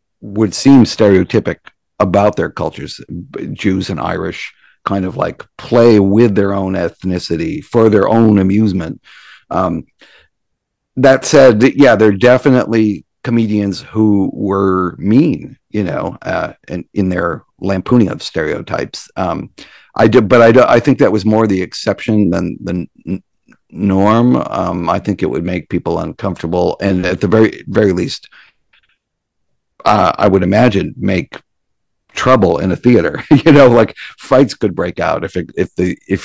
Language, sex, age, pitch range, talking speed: English, male, 50-69, 95-110 Hz, 150 wpm